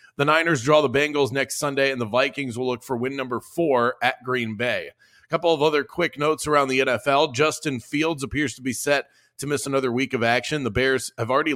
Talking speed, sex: 230 wpm, male